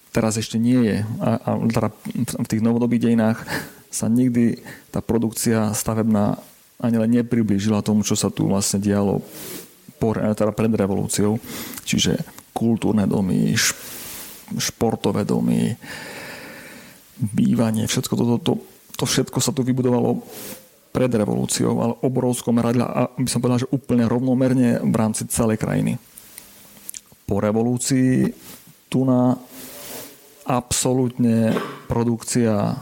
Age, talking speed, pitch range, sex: 40-59, 110 wpm, 105-120 Hz, male